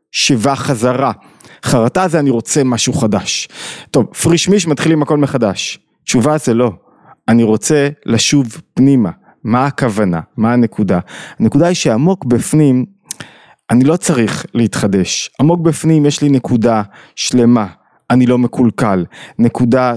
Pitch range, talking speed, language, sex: 125-170 Hz, 130 wpm, Hebrew, male